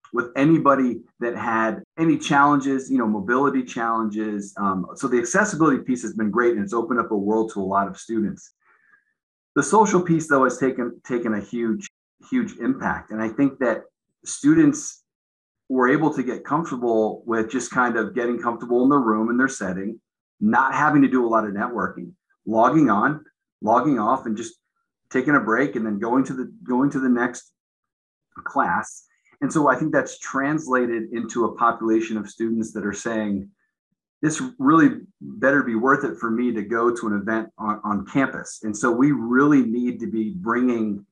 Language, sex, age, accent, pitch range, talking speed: English, male, 30-49, American, 110-145 Hz, 185 wpm